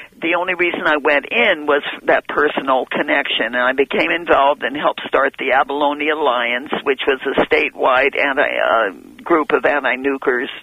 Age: 50-69